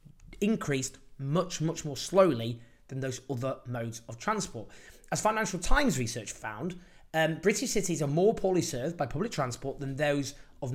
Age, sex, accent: 20-39, male, British